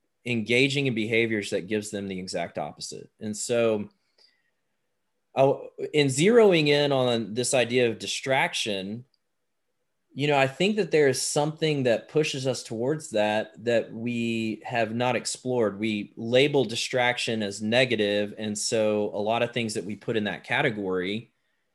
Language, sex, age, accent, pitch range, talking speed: English, male, 20-39, American, 105-130 Hz, 150 wpm